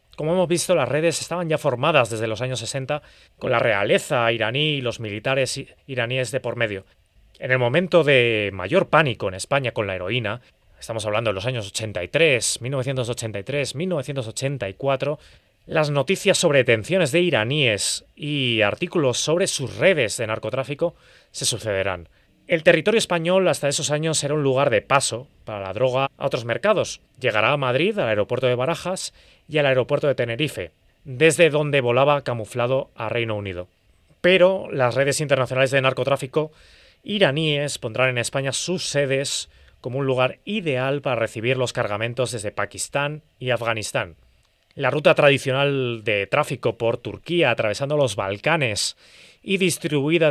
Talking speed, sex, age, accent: 155 wpm, male, 30-49, Spanish